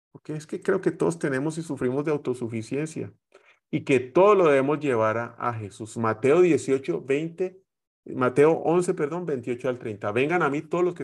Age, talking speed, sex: 30-49, 190 wpm, male